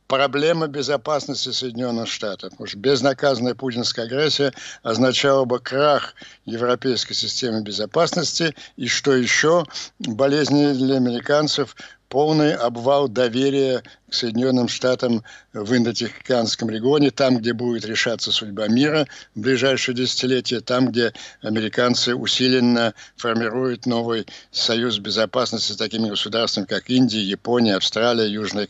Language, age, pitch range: Ukrainian, 60-79, 110-130 Hz